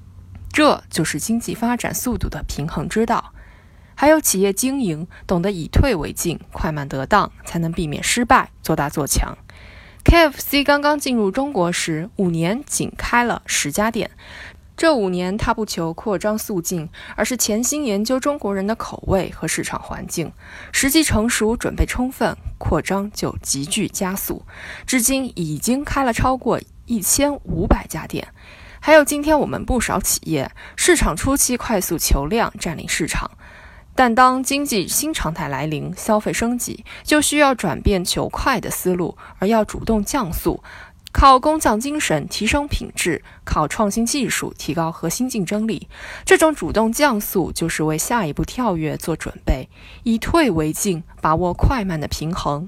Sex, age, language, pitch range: female, 20-39, Chinese, 170-255 Hz